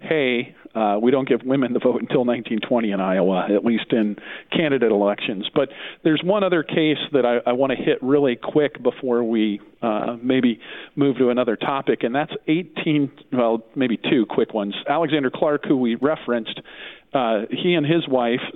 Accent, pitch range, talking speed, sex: American, 115-140 Hz, 180 wpm, male